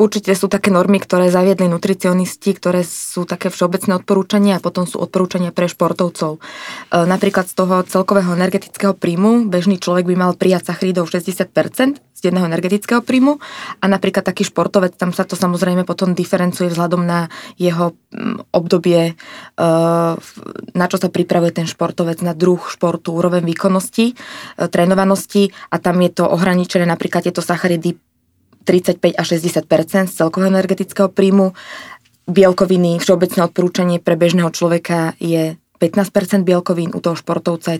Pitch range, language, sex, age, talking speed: 165-185 Hz, Slovak, female, 20-39, 140 wpm